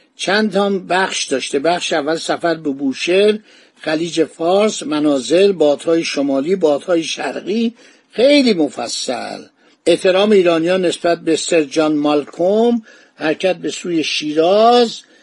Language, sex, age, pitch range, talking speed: Persian, male, 50-69, 160-210 Hz, 115 wpm